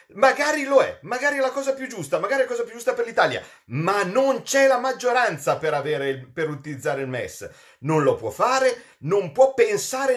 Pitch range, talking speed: 190-270 Hz, 210 wpm